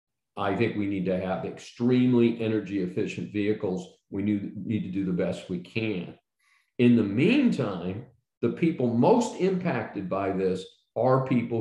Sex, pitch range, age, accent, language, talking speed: male, 100-120 Hz, 50-69, American, English, 150 wpm